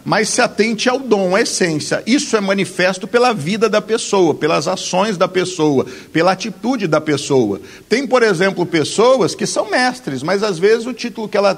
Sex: male